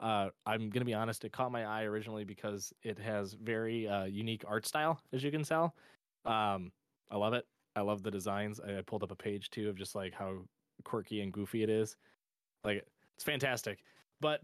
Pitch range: 110-145 Hz